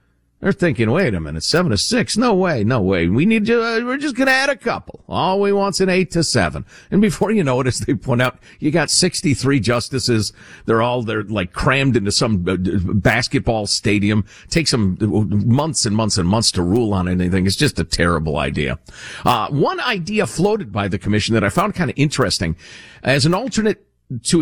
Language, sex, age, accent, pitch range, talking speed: English, male, 50-69, American, 105-170 Hz, 210 wpm